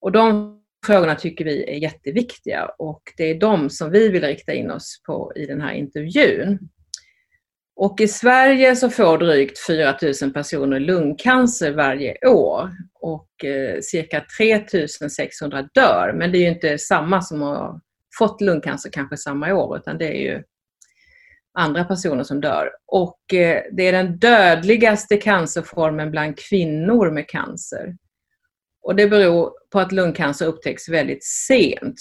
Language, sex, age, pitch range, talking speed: Swedish, female, 30-49, 155-220 Hz, 150 wpm